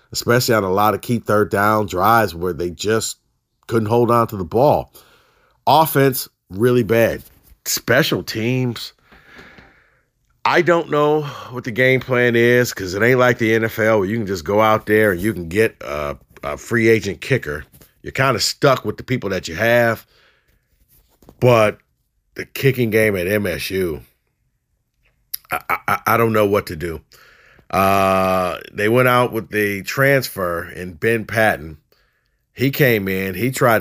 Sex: male